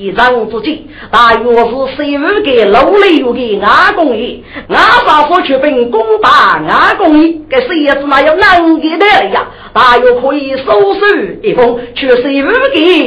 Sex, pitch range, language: female, 265-370 Hz, Chinese